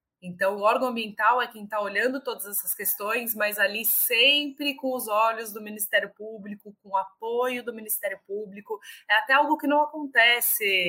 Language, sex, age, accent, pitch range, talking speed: Portuguese, female, 20-39, Brazilian, 180-220 Hz, 175 wpm